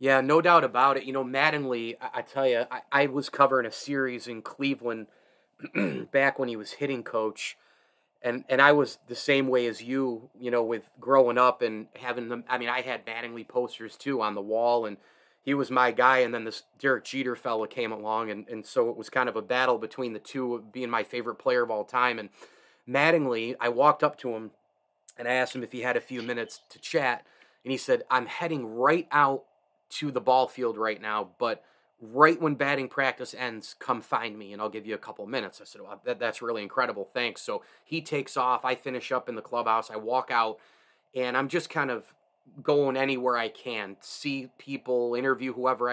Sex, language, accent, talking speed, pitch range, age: male, English, American, 220 wpm, 115-135 Hz, 30-49